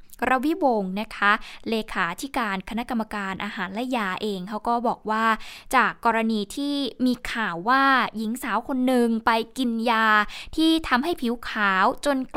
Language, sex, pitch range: Thai, female, 215-275 Hz